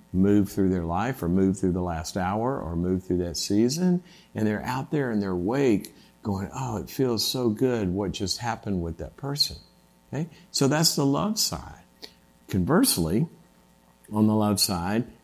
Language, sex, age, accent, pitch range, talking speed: English, male, 50-69, American, 90-125 Hz, 175 wpm